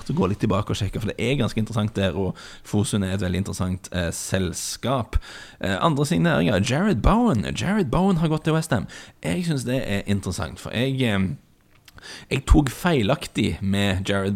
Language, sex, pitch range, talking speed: English, male, 90-100 Hz, 190 wpm